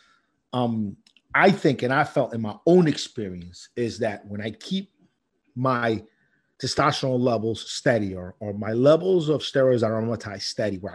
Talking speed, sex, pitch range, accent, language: 160 wpm, male, 110-140 Hz, American, English